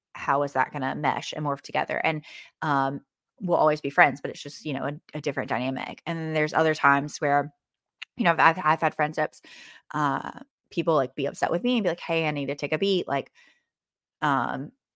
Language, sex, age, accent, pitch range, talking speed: English, female, 20-39, American, 140-160 Hz, 220 wpm